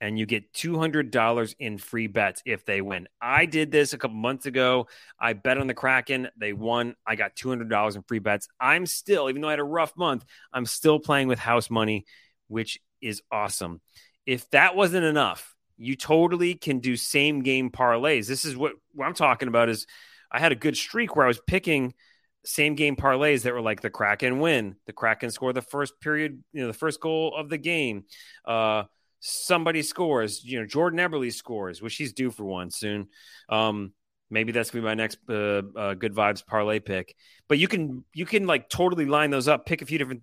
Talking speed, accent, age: 205 wpm, American, 30-49